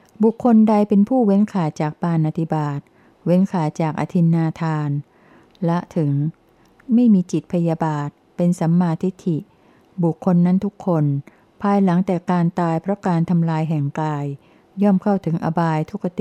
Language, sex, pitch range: Thai, female, 160-190 Hz